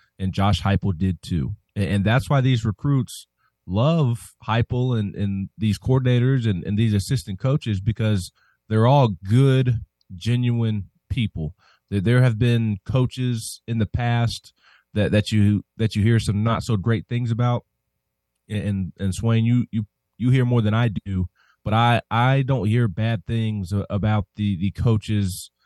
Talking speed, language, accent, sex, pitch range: 160 wpm, English, American, male, 100-120 Hz